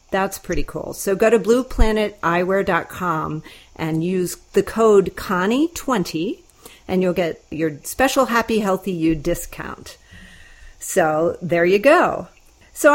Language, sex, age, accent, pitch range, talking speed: English, female, 40-59, American, 160-220 Hz, 120 wpm